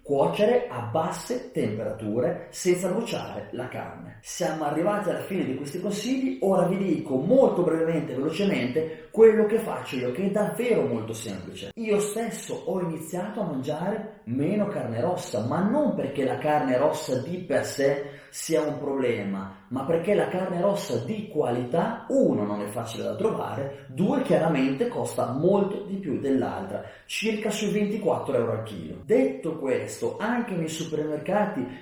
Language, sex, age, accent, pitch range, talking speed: Italian, male, 30-49, native, 140-205 Hz, 155 wpm